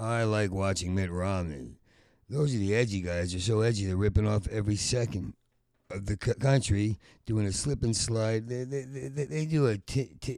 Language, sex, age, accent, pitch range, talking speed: English, male, 50-69, American, 105-130 Hz, 200 wpm